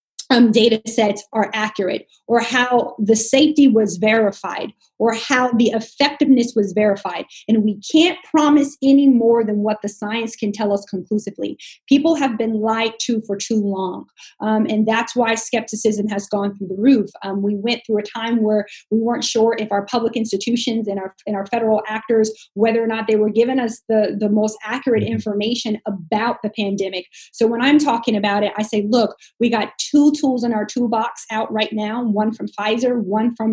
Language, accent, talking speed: English, American, 190 wpm